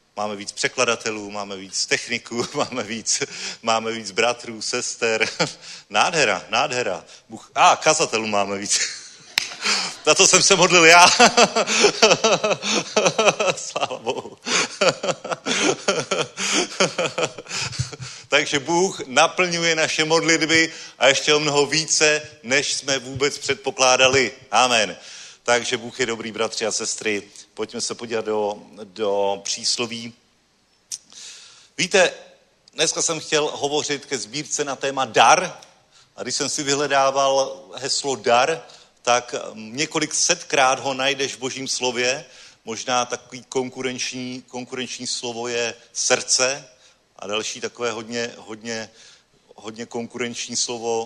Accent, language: native, Czech